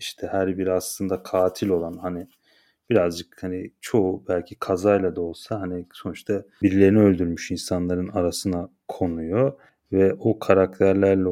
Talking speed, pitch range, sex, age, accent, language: 125 wpm, 90-105 Hz, male, 30-49, native, Turkish